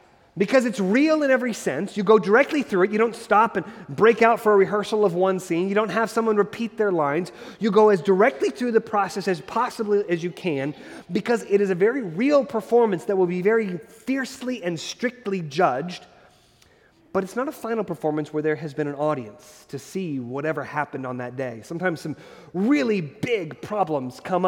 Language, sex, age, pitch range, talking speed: English, male, 30-49, 150-220 Hz, 200 wpm